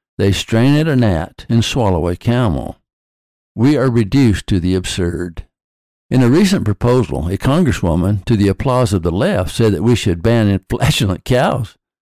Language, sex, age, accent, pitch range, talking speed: English, male, 60-79, American, 95-130 Hz, 170 wpm